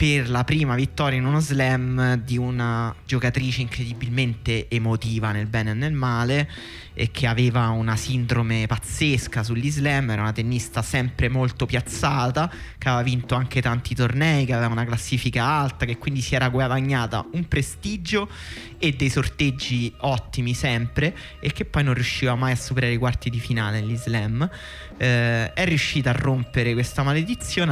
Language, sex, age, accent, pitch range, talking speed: Italian, male, 20-39, native, 115-145 Hz, 160 wpm